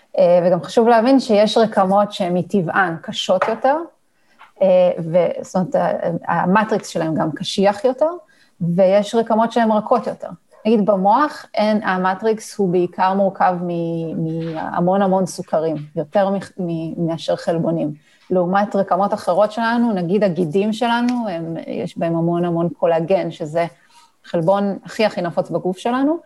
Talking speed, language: 135 wpm, Hebrew